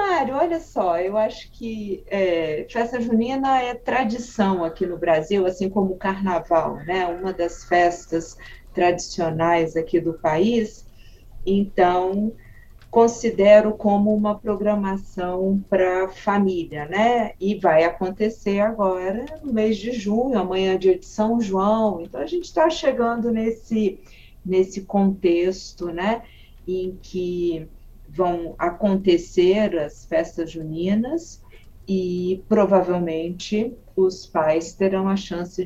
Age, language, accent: 40-59, Portuguese, Brazilian